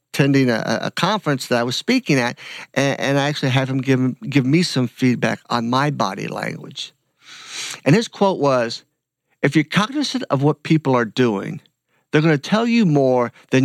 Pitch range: 125-155 Hz